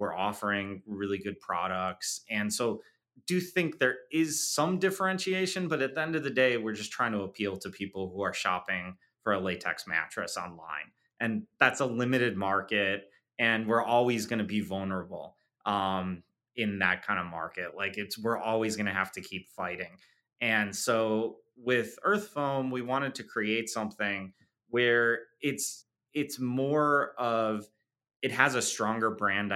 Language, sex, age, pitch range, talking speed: English, male, 30-49, 100-125 Hz, 170 wpm